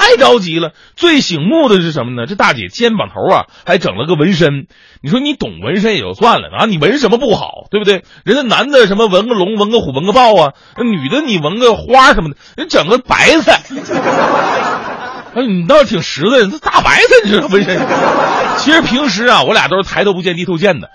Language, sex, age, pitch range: Chinese, male, 30-49, 175-255 Hz